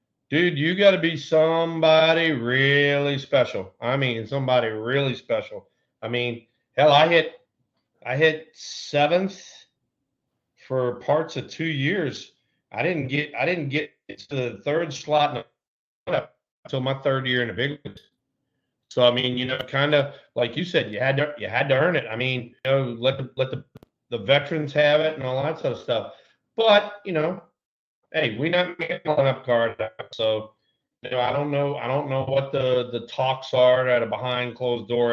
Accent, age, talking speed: American, 40-59, 190 wpm